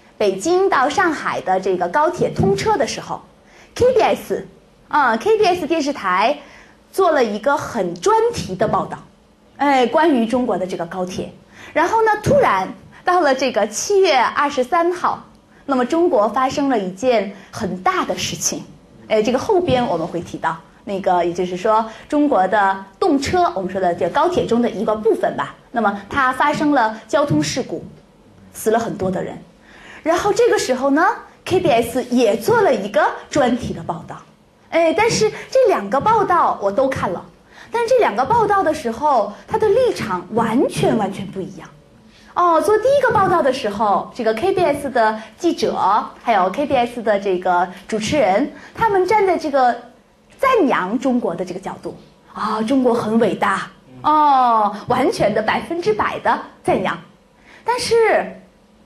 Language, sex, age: Korean, female, 20-39